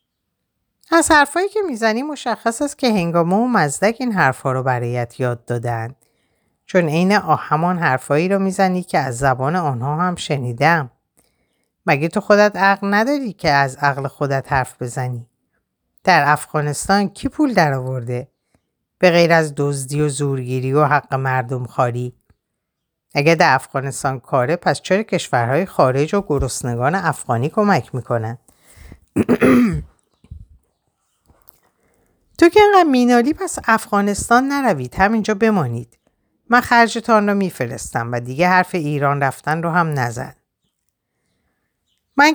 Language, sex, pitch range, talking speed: Persian, female, 130-190 Hz, 125 wpm